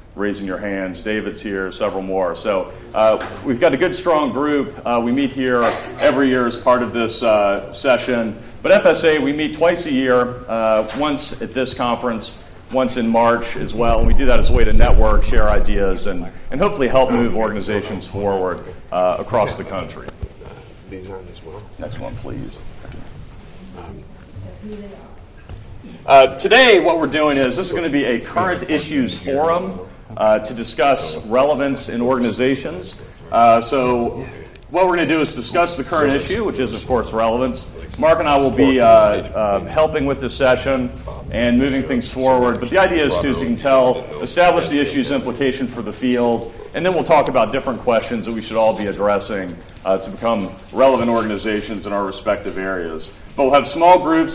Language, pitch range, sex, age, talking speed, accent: English, 100-130 Hz, male, 40-59, 180 wpm, American